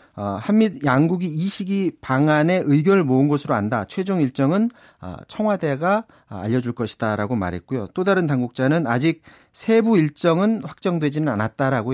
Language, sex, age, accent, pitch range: Korean, male, 40-59, native, 115-170 Hz